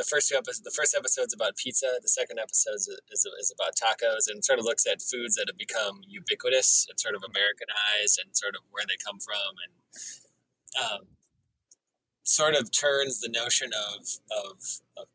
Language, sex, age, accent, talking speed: English, male, 20-39, American, 175 wpm